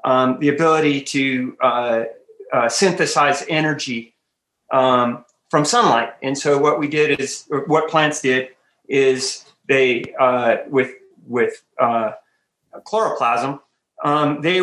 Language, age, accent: English, 30-49, American